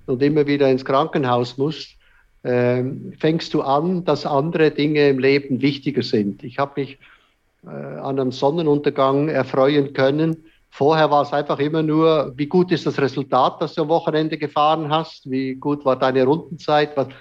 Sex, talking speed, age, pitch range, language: male, 165 wpm, 50-69, 130-155 Hz, German